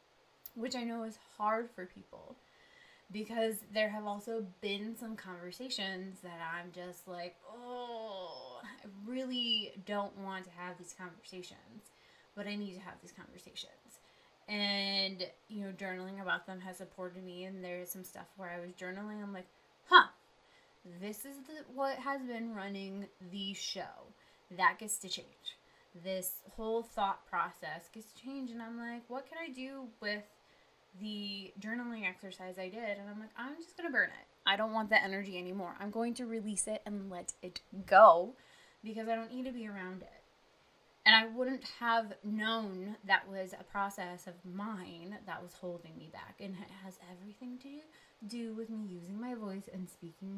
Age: 20-39